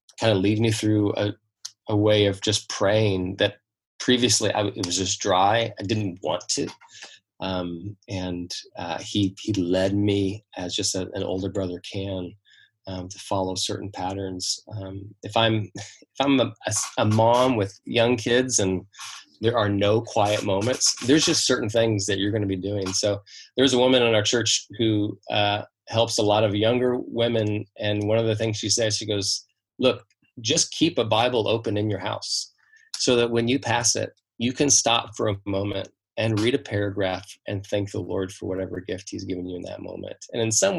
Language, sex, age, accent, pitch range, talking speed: English, male, 20-39, American, 100-115 Hz, 195 wpm